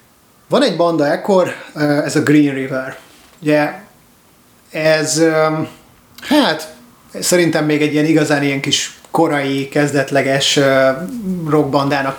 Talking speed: 105 wpm